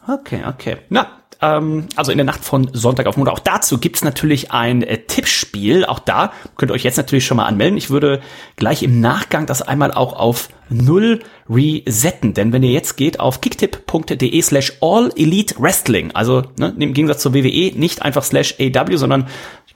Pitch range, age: 115-150 Hz, 30-49